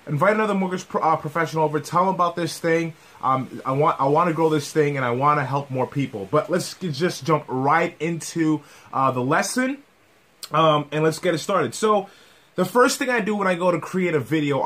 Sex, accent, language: male, American, English